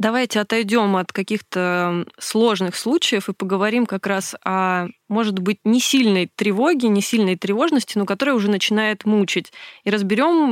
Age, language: 20-39, Russian